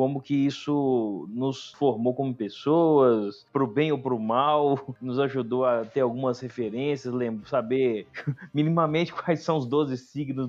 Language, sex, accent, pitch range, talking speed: Portuguese, male, Brazilian, 125-155 Hz, 160 wpm